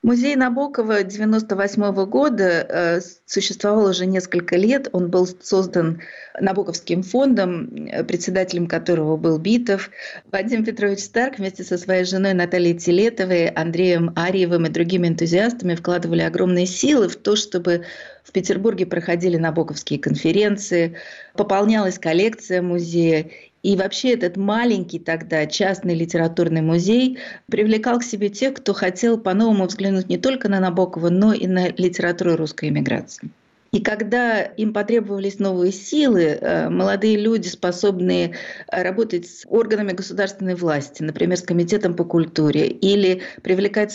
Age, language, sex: 30-49, Russian, female